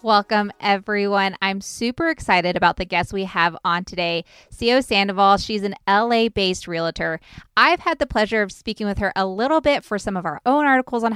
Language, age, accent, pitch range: English, 20-39, American, 185-235 Hz